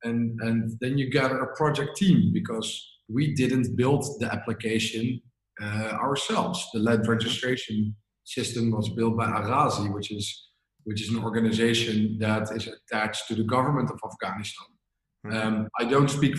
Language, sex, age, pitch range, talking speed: English, male, 40-59, 115-145 Hz, 155 wpm